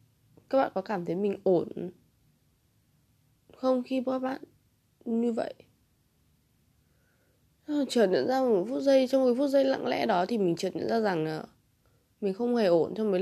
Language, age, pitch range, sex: Vietnamese, 20-39, 180-255 Hz, female